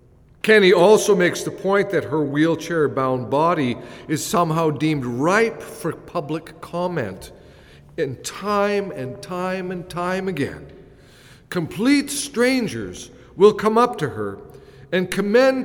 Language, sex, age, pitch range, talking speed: English, male, 50-69, 135-190 Hz, 125 wpm